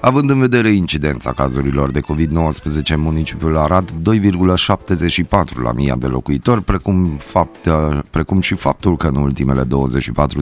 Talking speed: 130 wpm